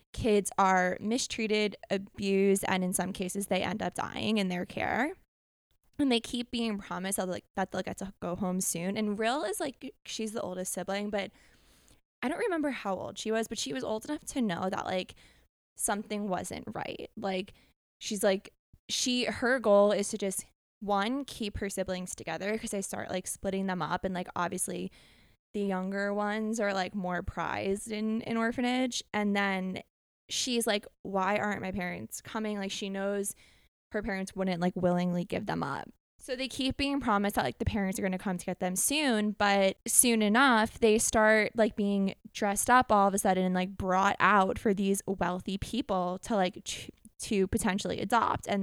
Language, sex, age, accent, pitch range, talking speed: English, female, 20-39, American, 190-220 Hz, 190 wpm